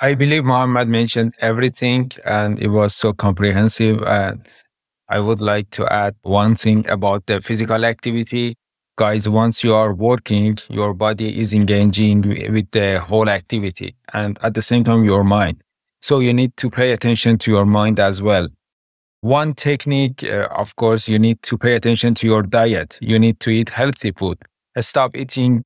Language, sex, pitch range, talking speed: English, male, 105-125 Hz, 175 wpm